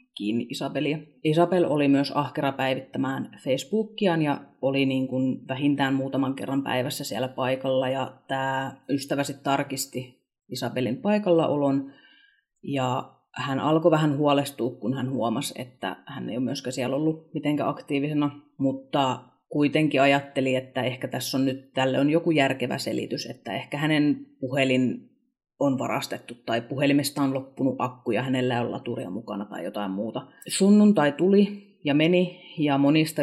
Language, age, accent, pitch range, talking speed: Finnish, 30-49, native, 130-150 Hz, 145 wpm